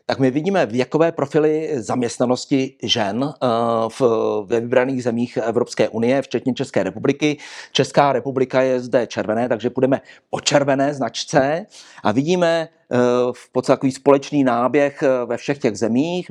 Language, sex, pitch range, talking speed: Czech, male, 125-155 Hz, 130 wpm